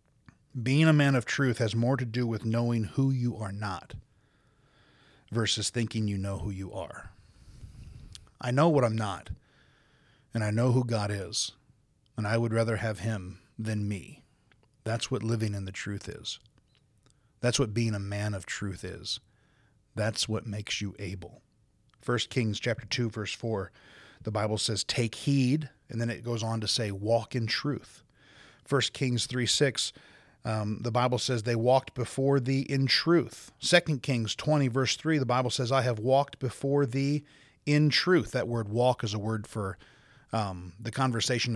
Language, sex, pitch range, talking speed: English, male, 110-135 Hz, 175 wpm